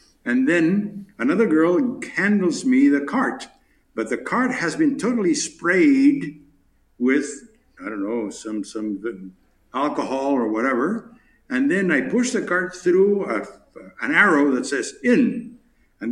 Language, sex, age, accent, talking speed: English, male, 60-79, American, 140 wpm